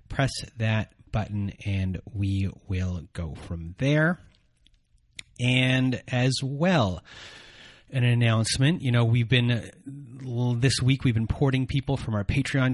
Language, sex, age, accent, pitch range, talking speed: English, male, 30-49, American, 110-130 Hz, 125 wpm